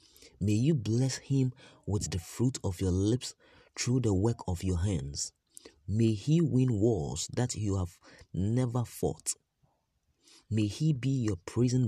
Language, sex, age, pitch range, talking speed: English, male, 30-49, 90-115 Hz, 150 wpm